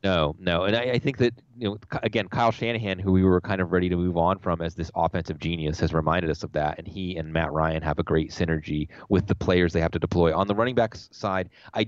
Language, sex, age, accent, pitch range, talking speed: English, male, 30-49, American, 85-105 Hz, 270 wpm